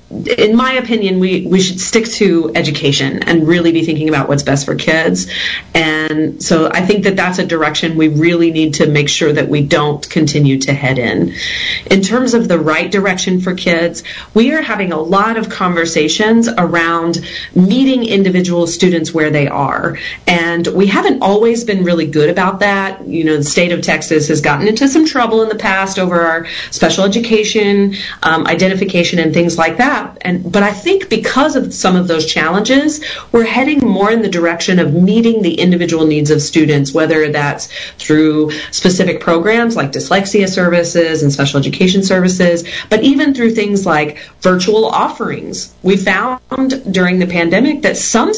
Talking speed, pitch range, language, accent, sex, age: 175 wpm, 160-215 Hz, English, American, female, 40-59